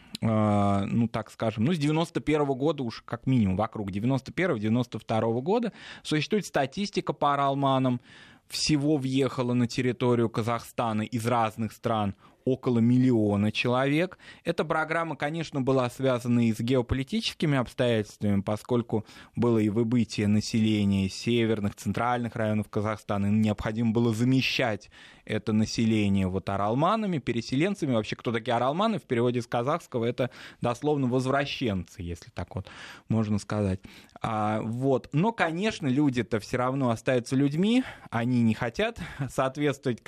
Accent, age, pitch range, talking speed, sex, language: native, 20-39, 110-135 Hz, 125 wpm, male, Russian